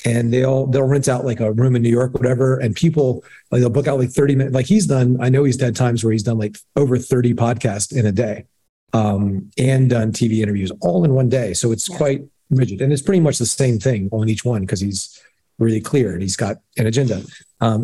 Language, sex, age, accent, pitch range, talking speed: English, male, 40-59, American, 120-145 Hz, 245 wpm